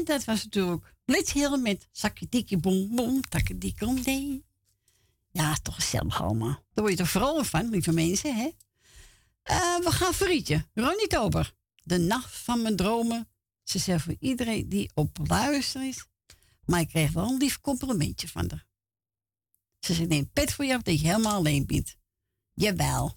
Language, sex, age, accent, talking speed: Dutch, female, 60-79, Dutch, 170 wpm